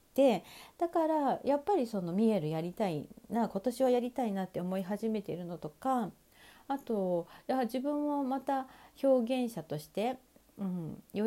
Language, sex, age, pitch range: Japanese, female, 40-59, 180-260 Hz